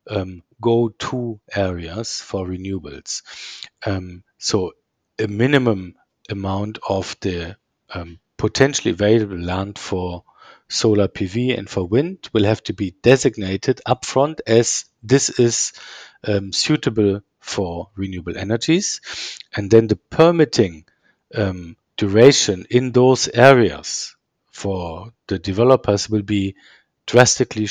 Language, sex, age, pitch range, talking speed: English, male, 50-69, 95-125 Hz, 115 wpm